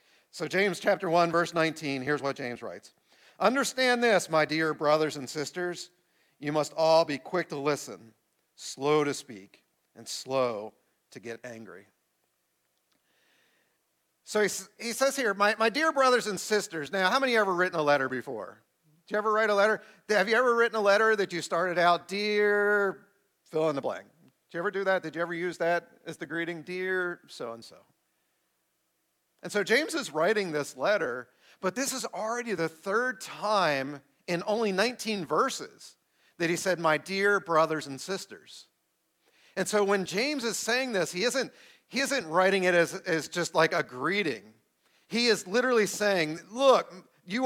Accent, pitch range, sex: American, 160-215 Hz, male